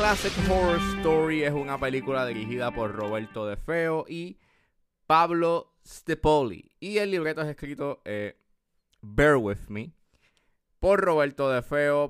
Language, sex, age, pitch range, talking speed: Spanish, male, 20-39, 110-150 Hz, 135 wpm